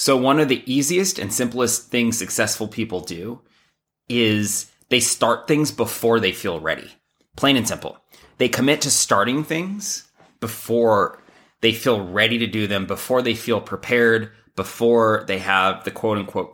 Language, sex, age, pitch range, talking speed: English, male, 30-49, 105-125 Hz, 155 wpm